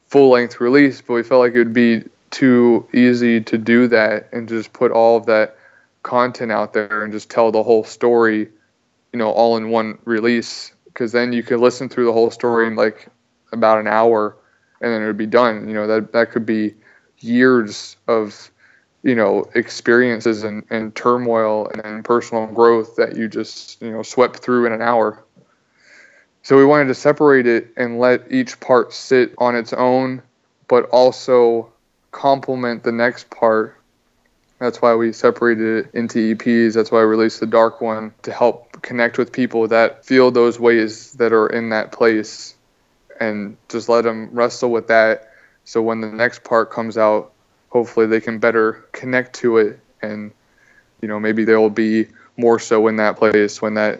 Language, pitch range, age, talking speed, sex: English, 110-120 Hz, 20-39, 180 wpm, male